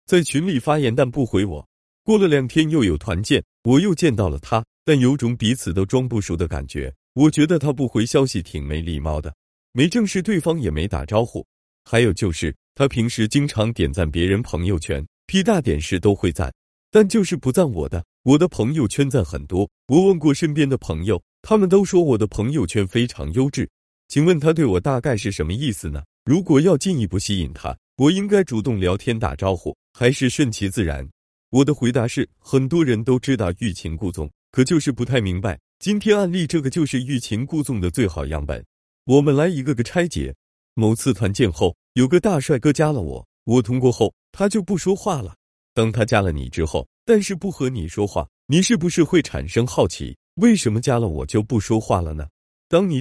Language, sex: Chinese, male